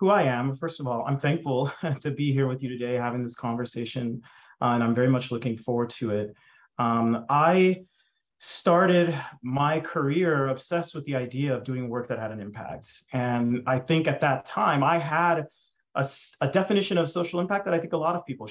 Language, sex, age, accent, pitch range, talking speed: English, male, 30-49, American, 130-175 Hz, 205 wpm